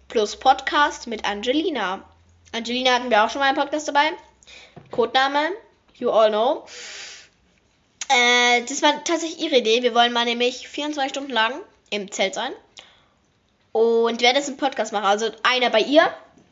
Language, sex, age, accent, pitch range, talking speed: German, female, 10-29, German, 220-275 Hz, 160 wpm